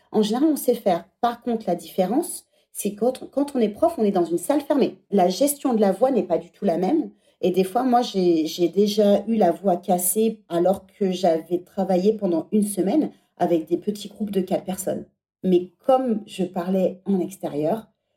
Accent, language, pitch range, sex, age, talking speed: French, French, 170-210 Hz, female, 40-59, 210 wpm